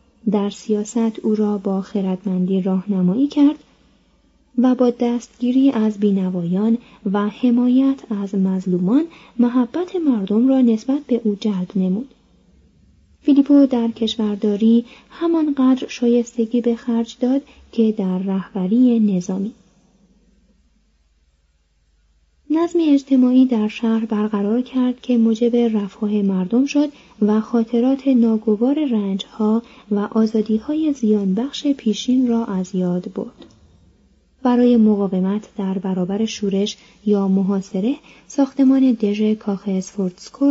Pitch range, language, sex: 195-250 Hz, Persian, female